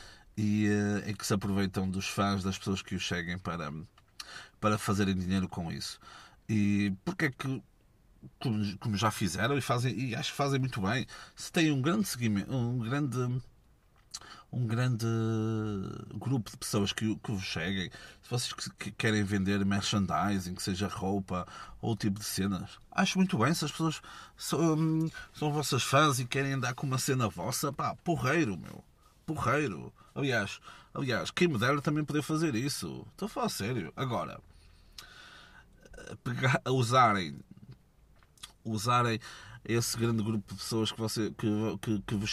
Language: Portuguese